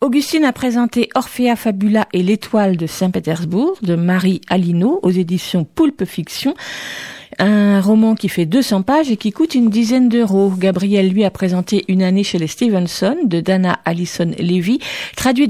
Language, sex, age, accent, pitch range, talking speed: French, female, 50-69, French, 185-245 Hz, 165 wpm